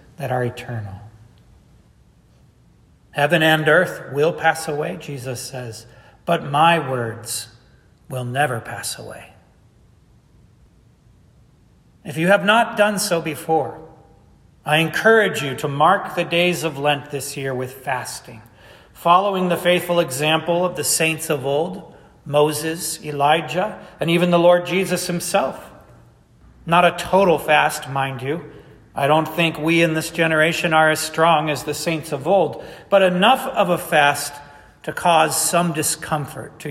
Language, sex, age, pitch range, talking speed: English, male, 40-59, 130-175 Hz, 140 wpm